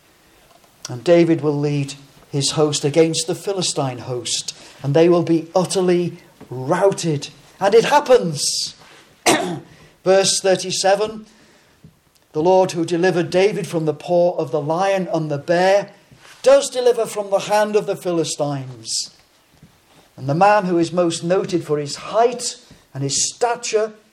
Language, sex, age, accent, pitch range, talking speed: English, male, 50-69, British, 150-190 Hz, 140 wpm